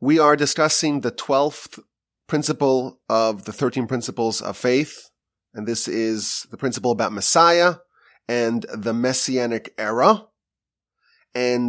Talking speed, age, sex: 125 wpm, 30-49, male